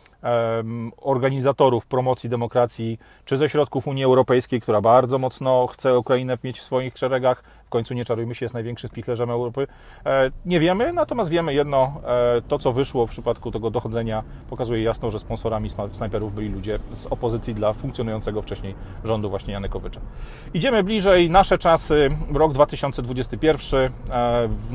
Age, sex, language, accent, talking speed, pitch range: 30-49, male, Polish, native, 145 wpm, 115-140 Hz